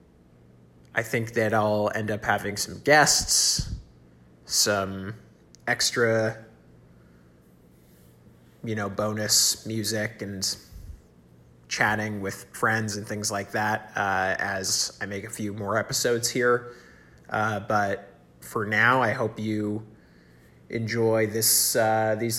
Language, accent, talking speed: English, American, 115 wpm